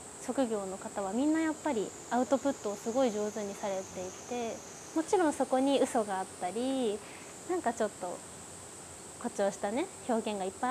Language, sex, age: Japanese, female, 20-39